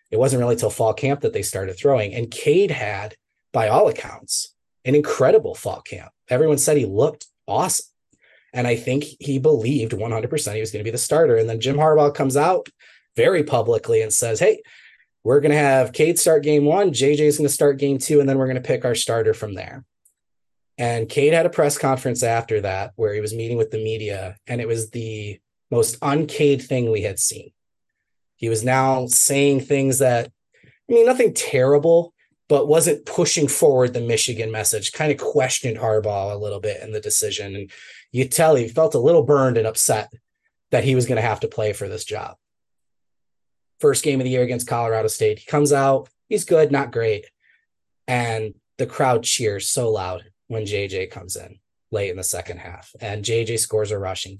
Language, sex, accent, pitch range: English, male, American, 110-150 Hz